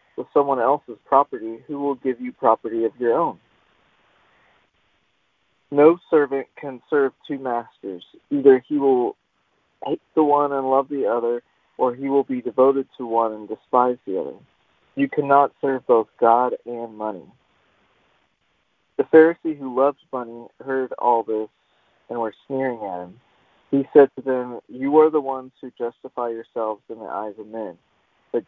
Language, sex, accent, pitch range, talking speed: English, male, American, 120-140 Hz, 160 wpm